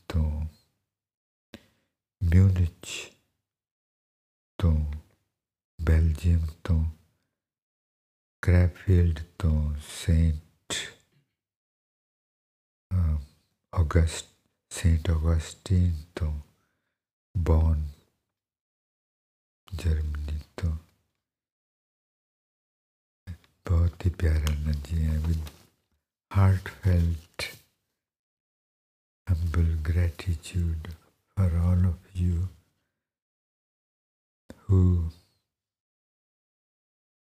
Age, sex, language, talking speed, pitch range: 60-79, male, English, 40 wpm, 80-95 Hz